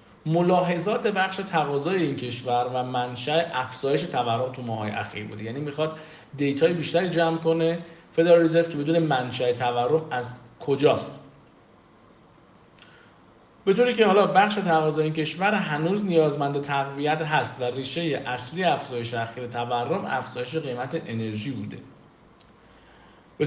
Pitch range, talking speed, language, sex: 125-175 Hz, 130 wpm, Persian, male